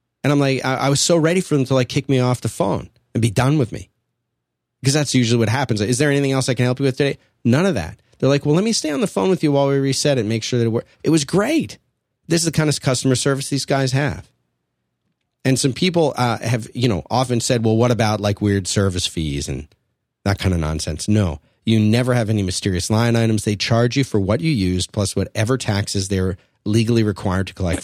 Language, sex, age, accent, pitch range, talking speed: English, male, 30-49, American, 100-130 Hz, 255 wpm